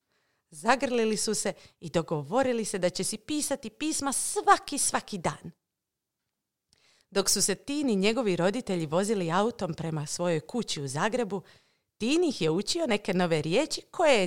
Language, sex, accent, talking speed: Croatian, female, native, 155 wpm